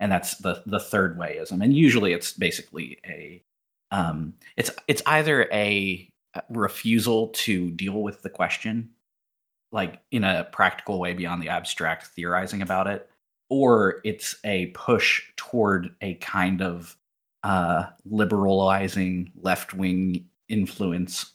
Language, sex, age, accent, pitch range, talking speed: English, male, 30-49, American, 90-100 Hz, 130 wpm